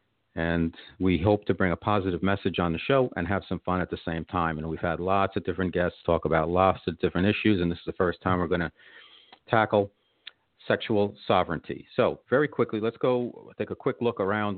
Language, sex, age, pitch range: English, male, 50-69, 85-100 Hz